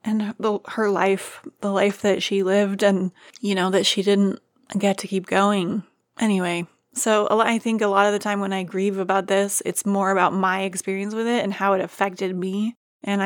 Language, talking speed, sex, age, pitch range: English, 205 wpm, female, 20-39, 195-235 Hz